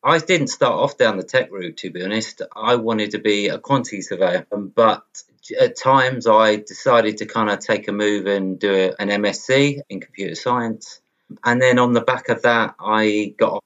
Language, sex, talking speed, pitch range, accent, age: English, male, 200 wpm, 100-125 Hz, British, 30-49